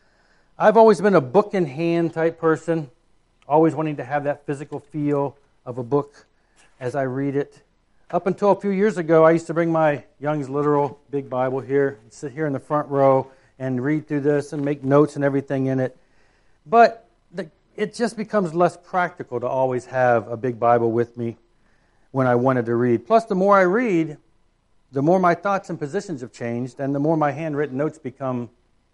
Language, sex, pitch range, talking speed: English, male, 125-180 Hz, 195 wpm